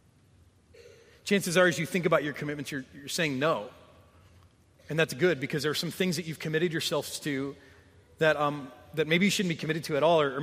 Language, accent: English, American